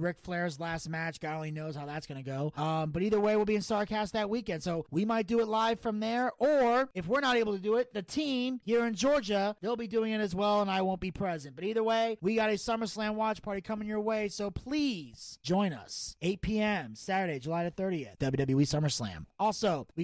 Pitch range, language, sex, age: 160-210 Hz, English, male, 30-49